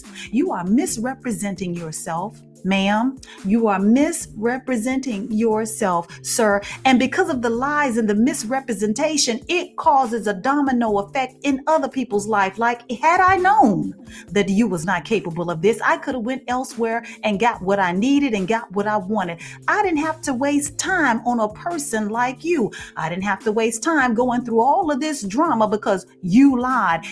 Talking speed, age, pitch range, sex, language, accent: 175 wpm, 40-59, 210-300 Hz, female, English, American